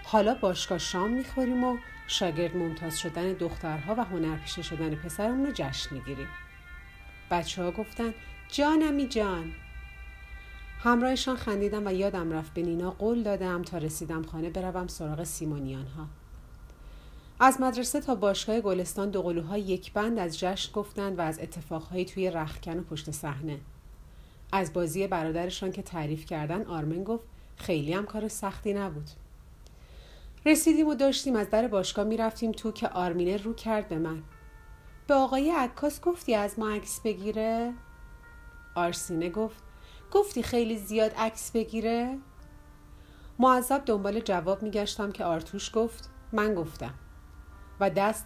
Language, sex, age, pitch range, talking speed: Persian, female, 40-59, 160-220 Hz, 135 wpm